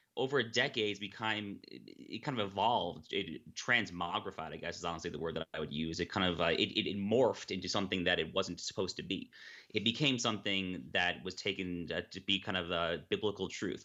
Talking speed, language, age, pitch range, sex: 205 wpm, English, 30-49, 85-115 Hz, male